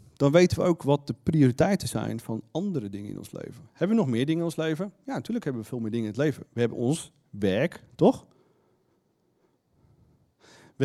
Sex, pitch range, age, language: male, 115-175 Hz, 40-59, Dutch